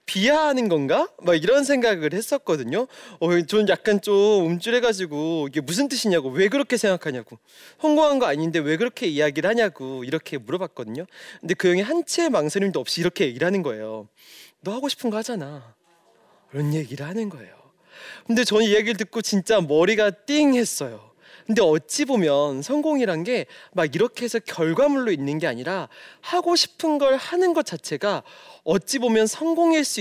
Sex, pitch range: male, 165-255 Hz